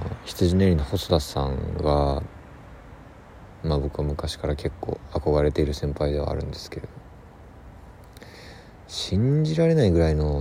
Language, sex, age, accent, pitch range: Japanese, male, 40-59, native, 75-95 Hz